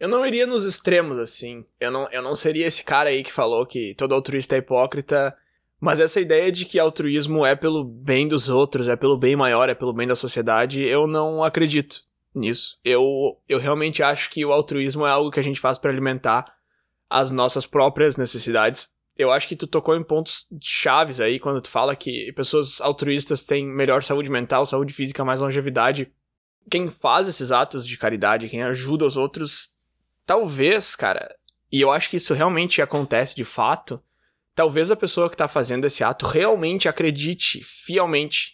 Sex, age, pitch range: male, 20-39, 130-155 Hz